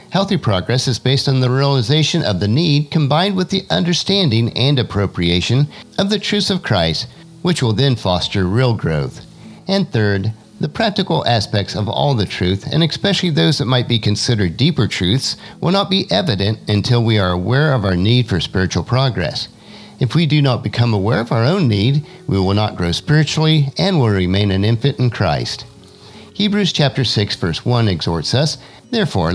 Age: 50-69